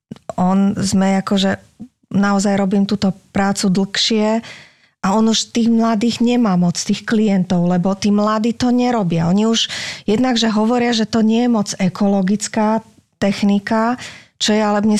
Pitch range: 190-220 Hz